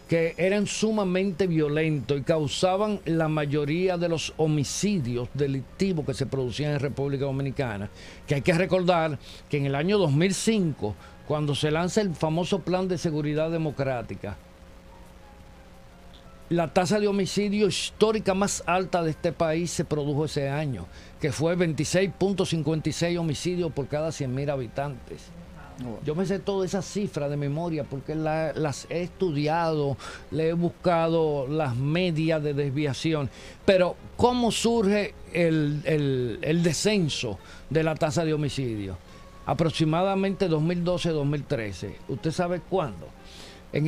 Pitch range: 140-180 Hz